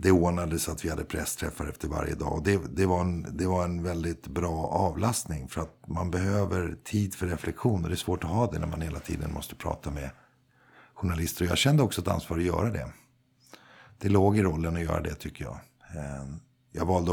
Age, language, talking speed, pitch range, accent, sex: 50-69, Swedish, 220 wpm, 80-105 Hz, native, male